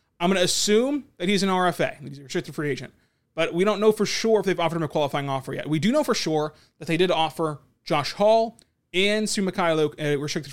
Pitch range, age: 145-185 Hz, 20-39